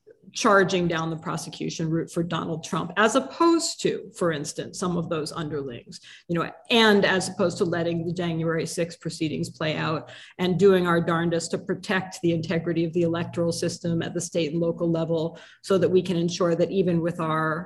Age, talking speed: 40-59, 195 wpm